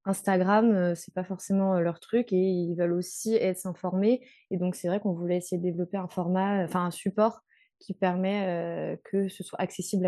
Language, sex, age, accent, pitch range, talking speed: French, female, 20-39, French, 175-195 Hz, 195 wpm